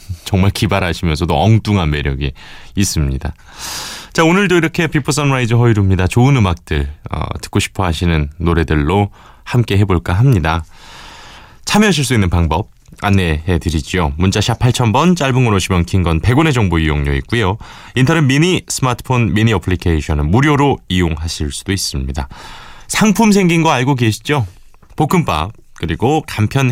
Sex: male